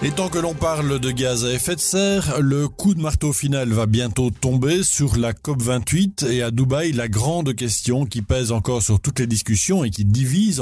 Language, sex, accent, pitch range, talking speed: French, male, French, 110-150 Hz, 215 wpm